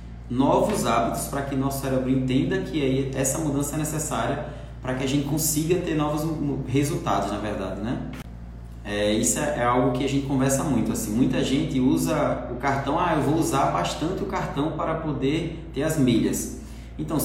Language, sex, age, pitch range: Portuguese, male, 20-39, 130-165 Hz